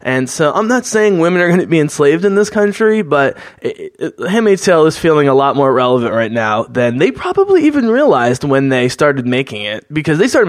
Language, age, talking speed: English, 20-39, 230 wpm